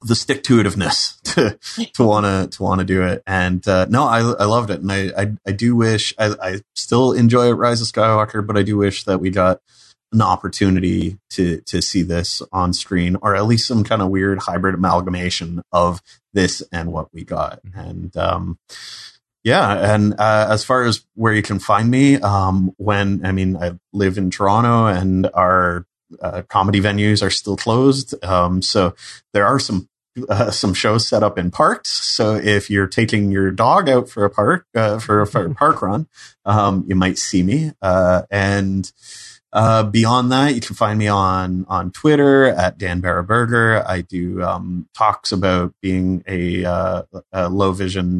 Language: English